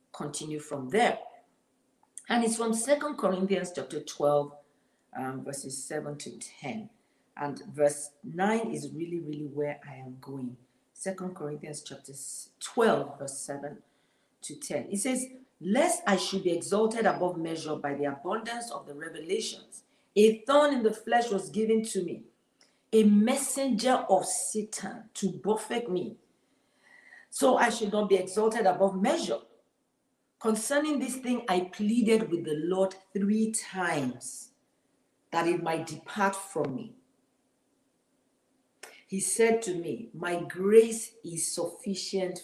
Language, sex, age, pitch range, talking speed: English, female, 50-69, 165-225 Hz, 135 wpm